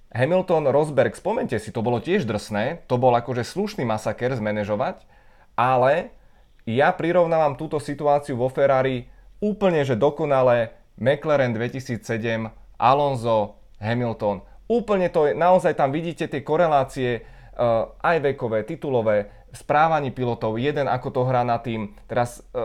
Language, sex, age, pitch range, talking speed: Czech, male, 30-49, 120-145 Hz, 130 wpm